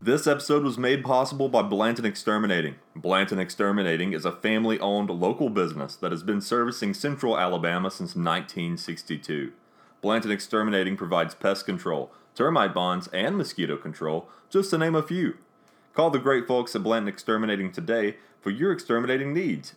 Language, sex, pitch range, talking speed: English, male, 95-125 Hz, 150 wpm